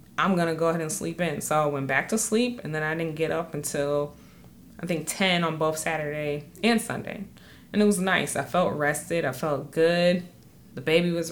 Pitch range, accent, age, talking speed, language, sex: 145-180 Hz, American, 20-39, 225 wpm, English, female